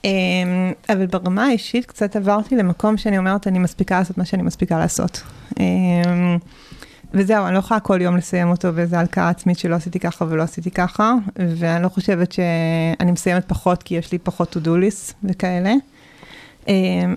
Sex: female